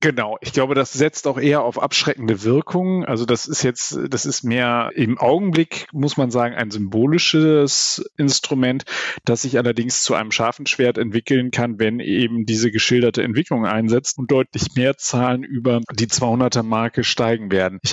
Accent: German